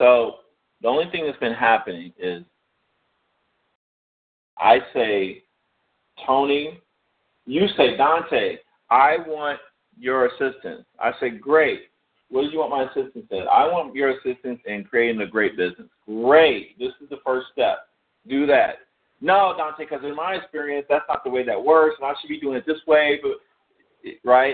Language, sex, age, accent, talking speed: English, male, 50-69, American, 165 wpm